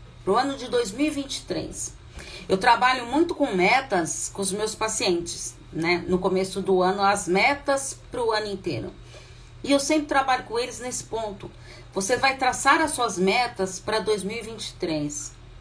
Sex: female